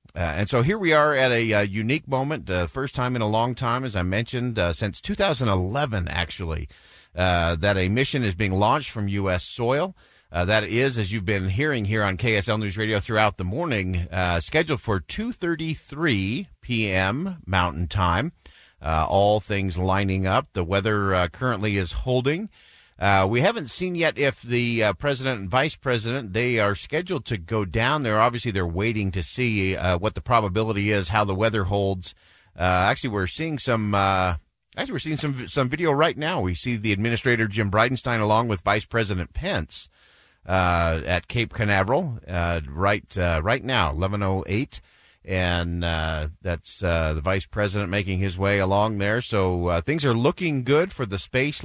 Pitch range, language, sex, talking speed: 95-125 Hz, English, male, 185 wpm